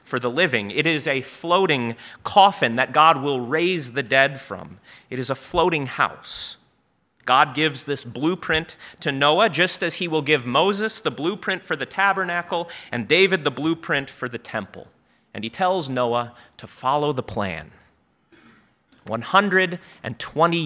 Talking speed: 155 wpm